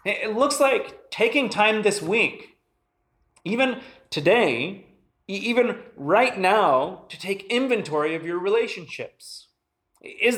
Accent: American